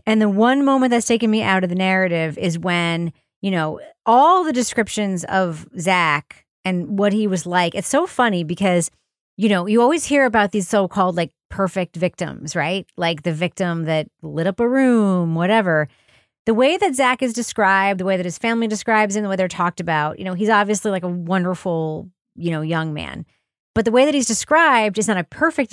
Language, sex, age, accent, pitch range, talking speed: English, female, 30-49, American, 170-225 Hz, 210 wpm